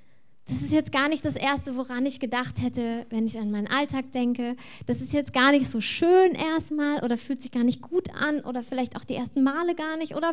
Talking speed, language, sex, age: 240 wpm, German, female, 20-39